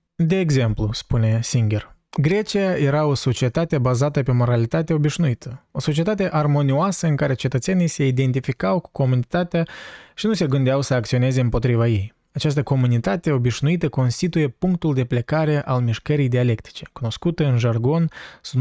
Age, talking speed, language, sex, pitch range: 20-39, 140 wpm, Romanian, male, 125-160 Hz